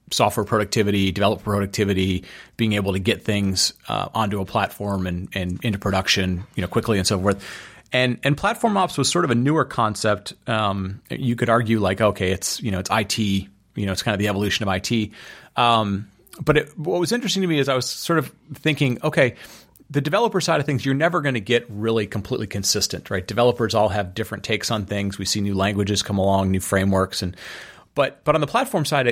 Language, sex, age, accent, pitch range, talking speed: English, male, 30-49, American, 100-125 Hz, 215 wpm